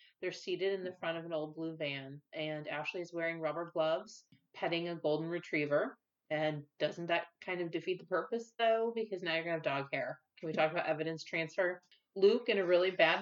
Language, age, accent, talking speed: English, 30-49, American, 220 wpm